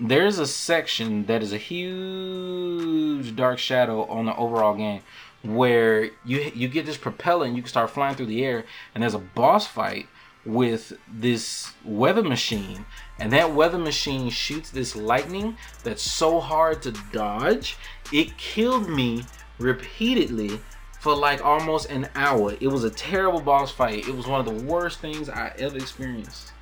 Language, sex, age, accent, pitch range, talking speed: English, male, 20-39, American, 115-155 Hz, 165 wpm